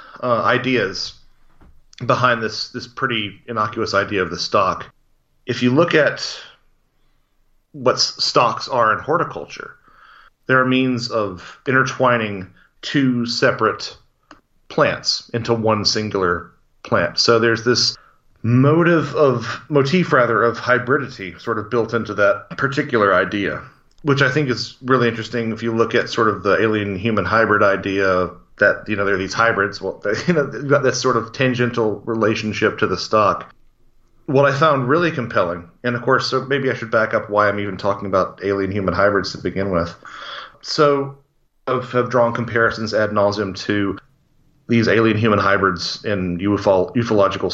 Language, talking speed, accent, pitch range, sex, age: English, 155 wpm, American, 100-125 Hz, male, 30-49